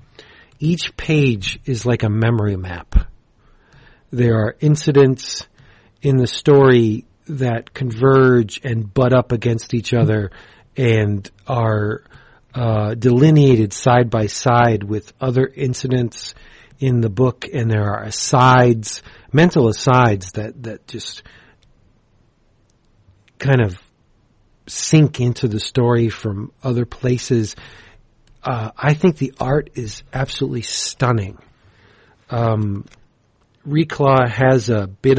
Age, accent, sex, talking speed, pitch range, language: 40-59, American, male, 110 wpm, 110-135 Hz, English